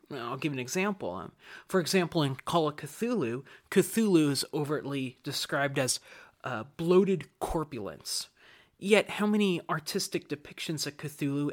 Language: English